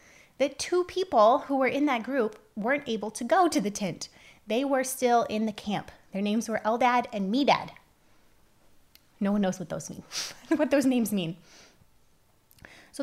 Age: 20-39